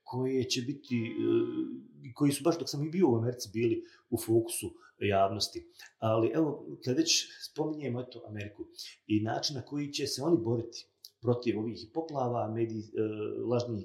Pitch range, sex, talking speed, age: 110-150 Hz, male, 150 wpm, 30-49